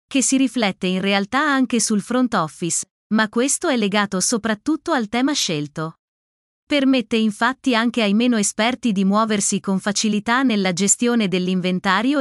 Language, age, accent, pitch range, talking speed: Italian, 30-49, native, 200-255 Hz, 145 wpm